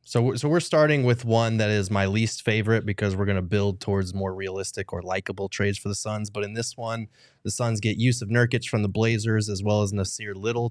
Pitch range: 100-115 Hz